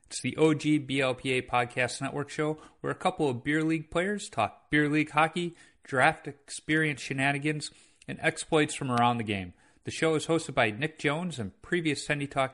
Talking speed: 180 wpm